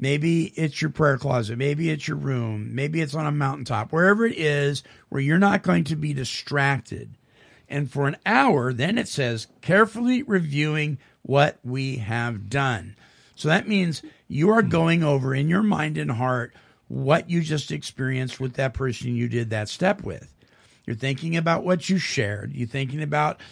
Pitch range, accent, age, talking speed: 125-165 Hz, American, 50-69, 180 wpm